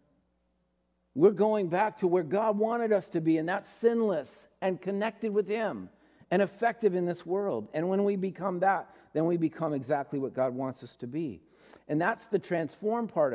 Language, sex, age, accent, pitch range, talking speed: English, male, 50-69, American, 135-190 Hz, 190 wpm